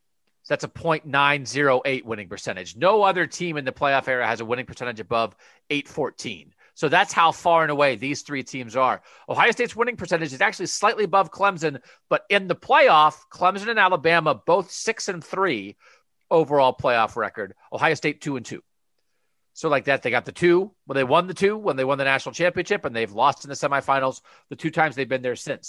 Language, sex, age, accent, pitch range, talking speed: English, male, 40-59, American, 135-190 Hz, 205 wpm